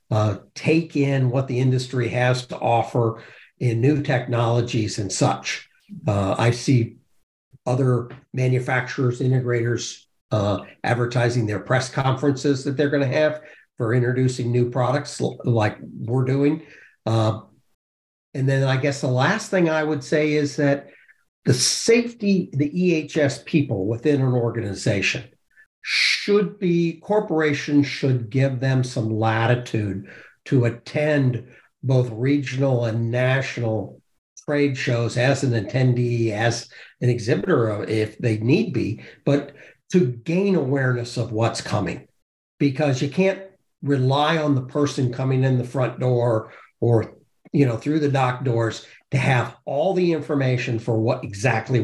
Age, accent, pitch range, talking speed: 60-79, American, 115-145 Hz, 135 wpm